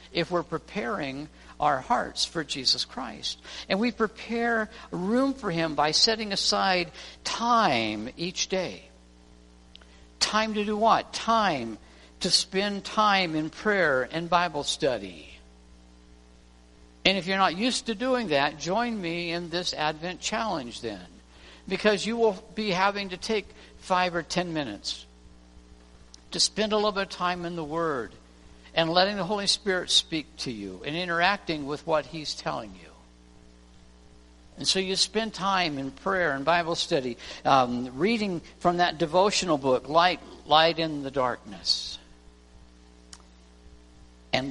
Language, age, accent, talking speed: English, 60-79, American, 145 wpm